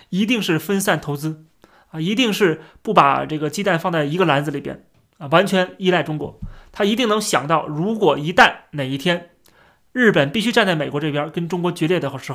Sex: male